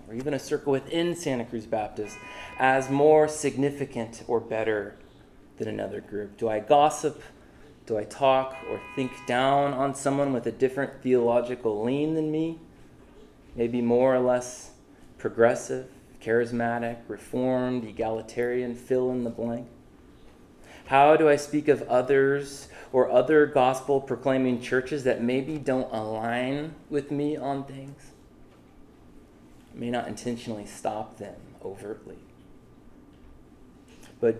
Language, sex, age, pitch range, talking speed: English, male, 20-39, 115-145 Hz, 125 wpm